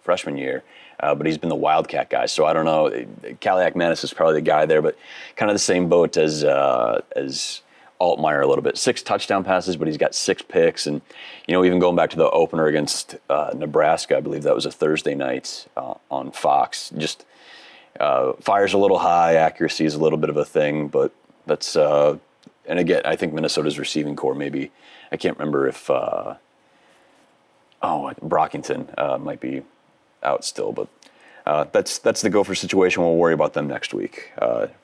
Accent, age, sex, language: American, 30-49, male, English